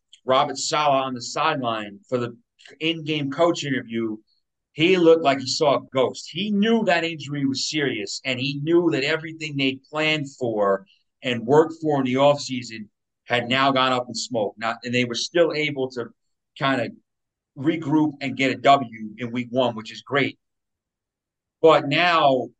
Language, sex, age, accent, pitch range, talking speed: English, male, 40-59, American, 125-155 Hz, 170 wpm